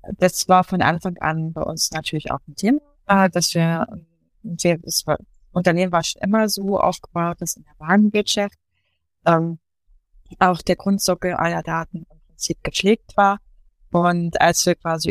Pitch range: 160-185 Hz